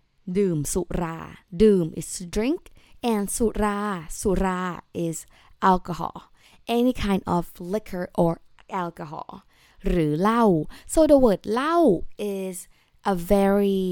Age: 20-39